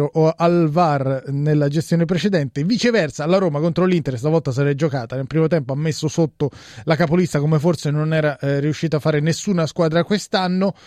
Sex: male